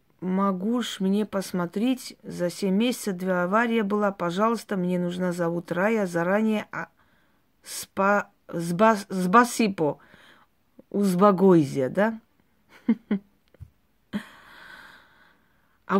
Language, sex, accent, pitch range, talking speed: Russian, female, native, 180-225 Hz, 80 wpm